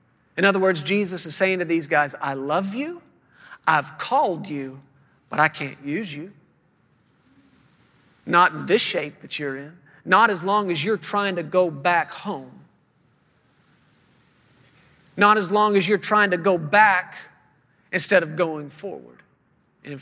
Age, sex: 40-59, male